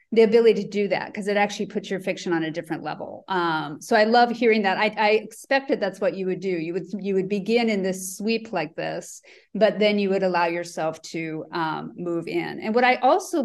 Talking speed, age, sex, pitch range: 235 wpm, 30-49, female, 190-240 Hz